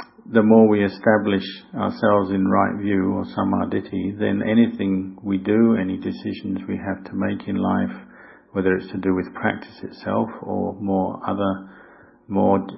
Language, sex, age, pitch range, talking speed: English, male, 50-69, 95-105 Hz, 155 wpm